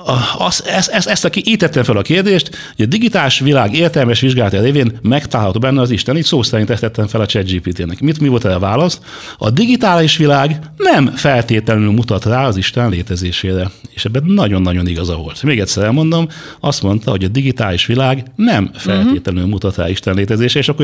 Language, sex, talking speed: Hungarian, male, 195 wpm